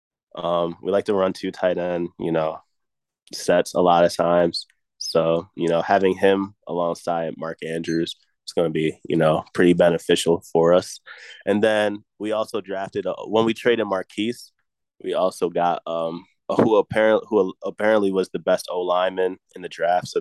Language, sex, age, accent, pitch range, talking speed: English, male, 20-39, American, 85-110 Hz, 185 wpm